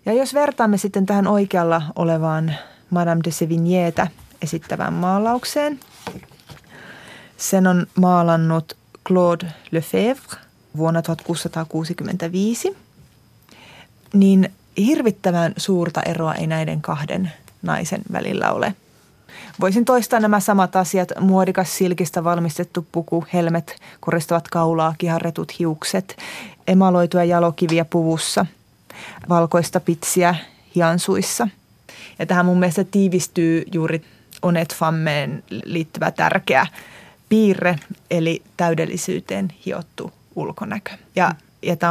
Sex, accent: female, native